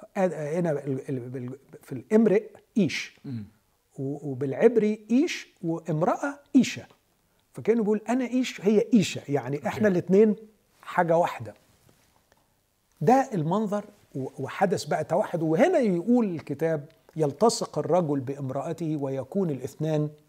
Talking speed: 95 wpm